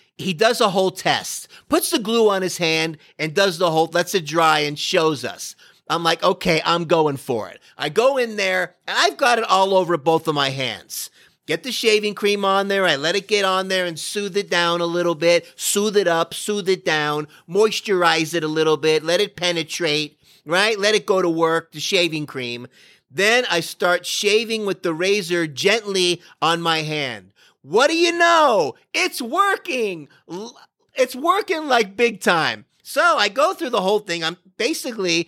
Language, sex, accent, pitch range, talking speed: English, male, American, 160-215 Hz, 195 wpm